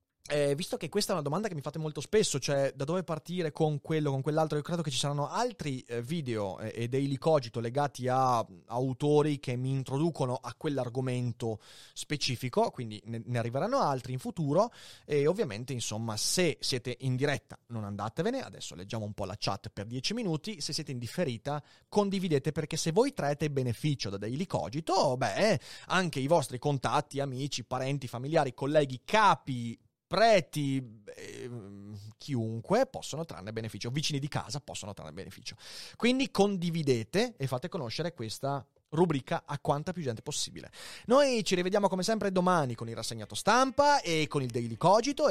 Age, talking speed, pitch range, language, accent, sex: 30-49, 170 wpm, 120-160 Hz, Italian, native, male